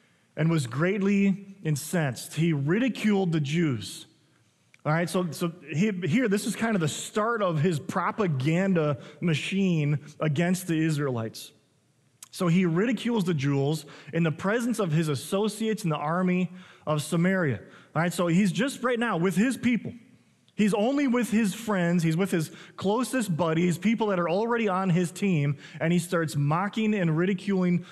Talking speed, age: 160 wpm, 30-49